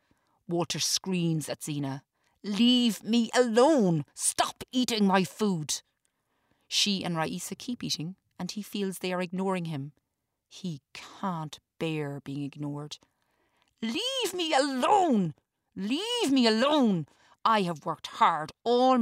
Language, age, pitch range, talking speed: English, 40-59, 155-200 Hz, 125 wpm